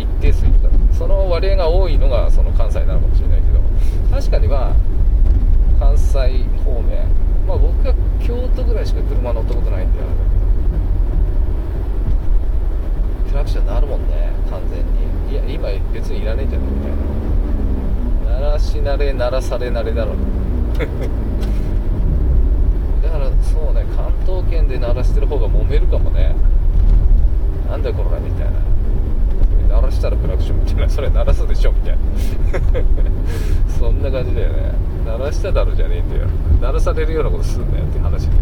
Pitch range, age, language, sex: 80-90 Hz, 20-39, Japanese, male